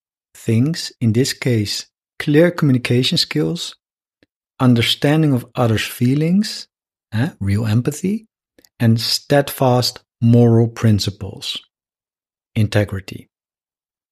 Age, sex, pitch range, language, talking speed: 50-69, male, 115-150 Hz, English, 80 wpm